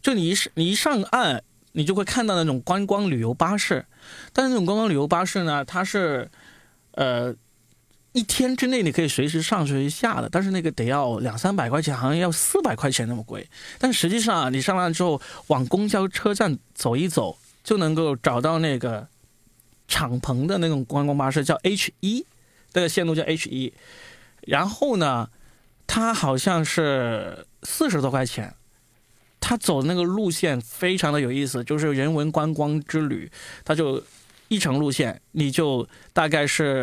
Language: Chinese